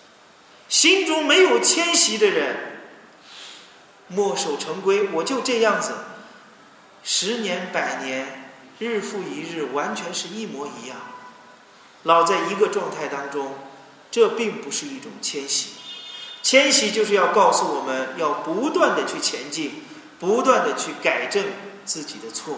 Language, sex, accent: Chinese, male, native